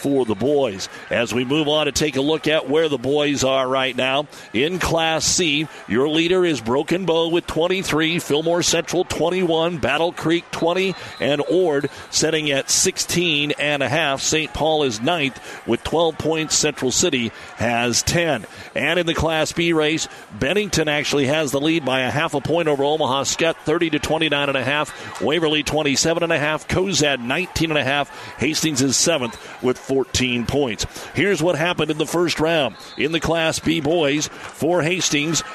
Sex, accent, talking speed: male, American, 185 wpm